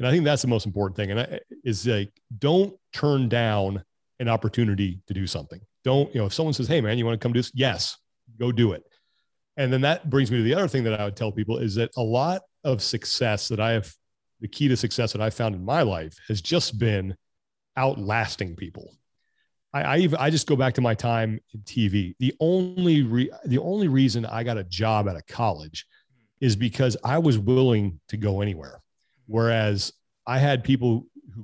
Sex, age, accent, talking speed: male, 40-59, American, 215 wpm